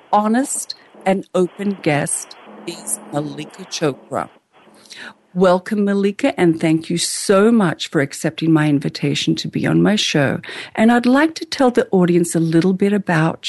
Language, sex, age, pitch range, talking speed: English, female, 50-69, 155-190 Hz, 150 wpm